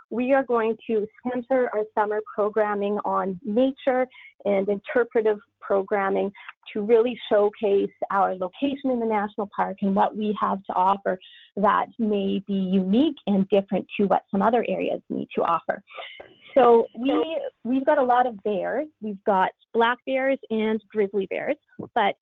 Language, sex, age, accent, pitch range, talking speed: English, female, 30-49, American, 200-250 Hz, 155 wpm